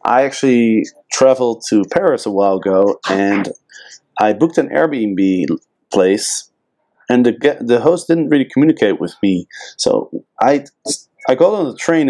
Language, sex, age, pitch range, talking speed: English, male, 30-49, 110-165 Hz, 155 wpm